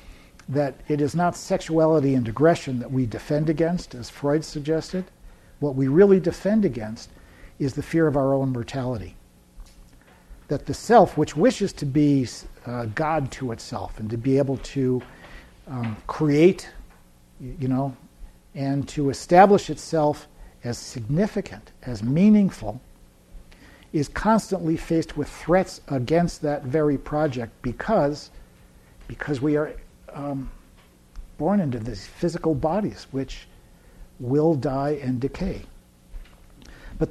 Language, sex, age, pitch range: English, male, 60-79, 110-160 Hz